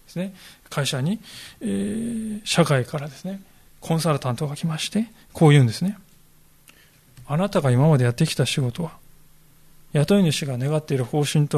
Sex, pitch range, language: male, 140-190 Hz, Japanese